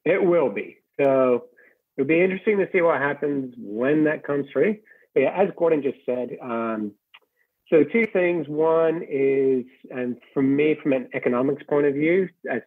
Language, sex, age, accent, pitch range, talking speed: English, male, 50-69, American, 115-150 Hz, 175 wpm